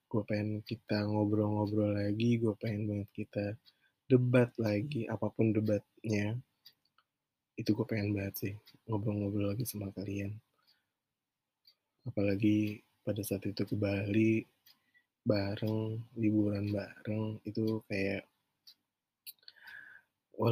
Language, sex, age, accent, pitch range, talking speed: Indonesian, male, 20-39, native, 100-110 Hz, 100 wpm